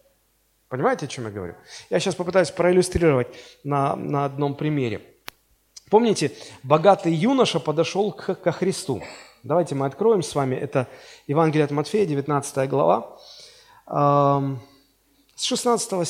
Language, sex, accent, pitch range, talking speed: Russian, male, native, 140-215 Hz, 125 wpm